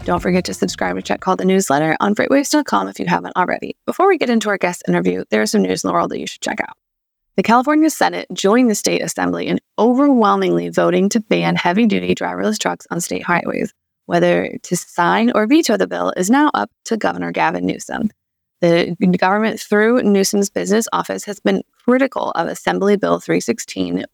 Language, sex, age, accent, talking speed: English, female, 20-39, American, 195 wpm